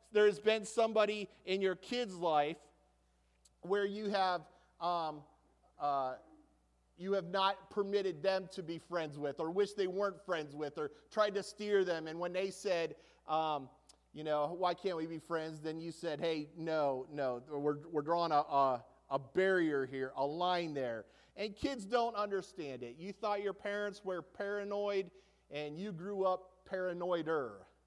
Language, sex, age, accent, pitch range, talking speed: English, male, 30-49, American, 165-210 Hz, 170 wpm